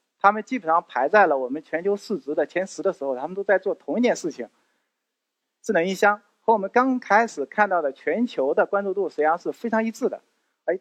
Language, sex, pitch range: Chinese, male, 180-245 Hz